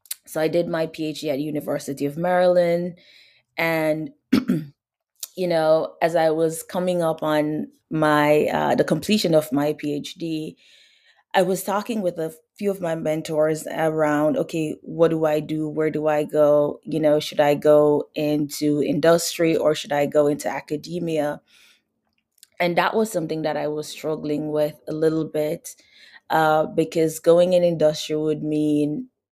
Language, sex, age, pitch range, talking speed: English, female, 20-39, 150-165 Hz, 155 wpm